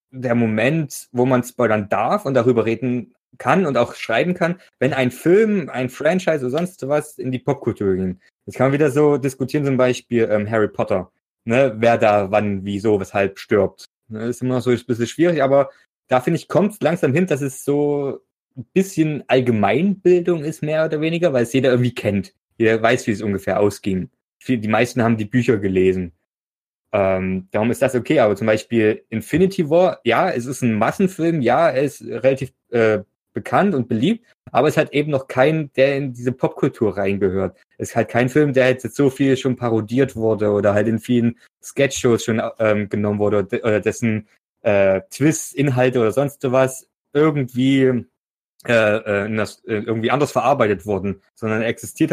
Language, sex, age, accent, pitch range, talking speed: German, male, 20-39, German, 110-140 Hz, 185 wpm